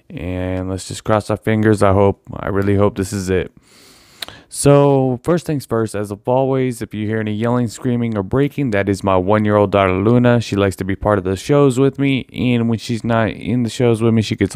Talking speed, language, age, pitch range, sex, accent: 240 wpm, English, 20-39, 100-130 Hz, male, American